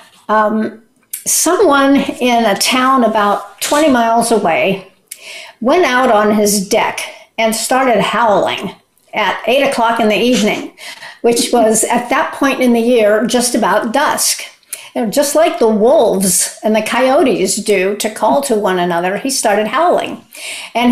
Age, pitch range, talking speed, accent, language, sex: 50-69, 210-270 Hz, 145 wpm, American, English, female